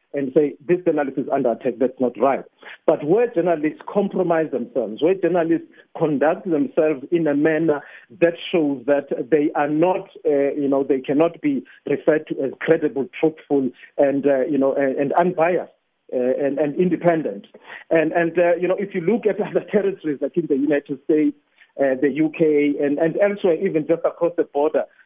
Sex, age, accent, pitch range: male, 50-69, South African, 155-195 Hz